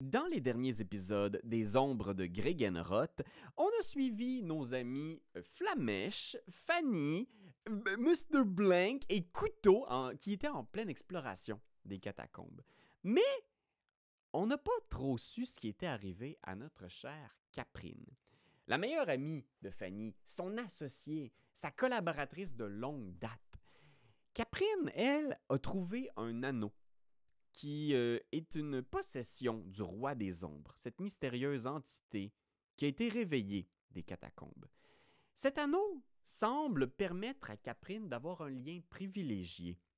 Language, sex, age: French, male, 30-49